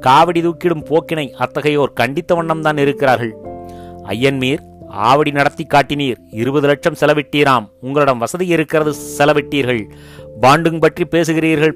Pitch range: 125-160 Hz